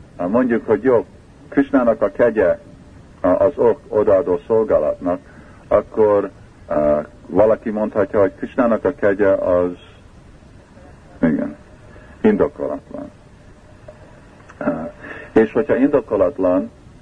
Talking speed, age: 80 wpm, 50-69